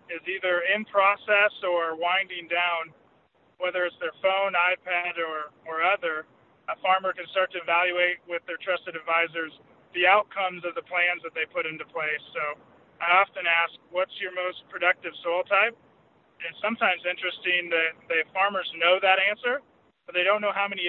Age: 20-39